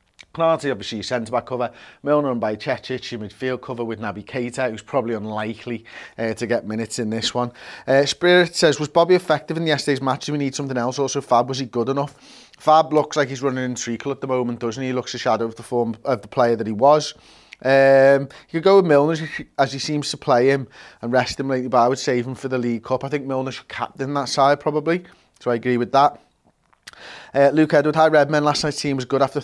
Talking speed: 240 wpm